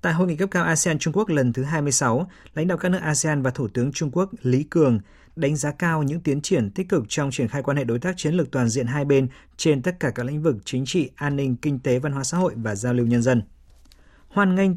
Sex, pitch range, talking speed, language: male, 125-160 Hz, 270 wpm, Vietnamese